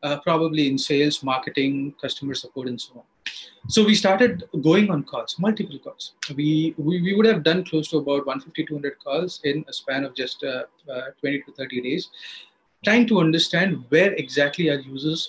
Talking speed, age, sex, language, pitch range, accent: 190 wpm, 30-49, male, English, 140-185 Hz, Indian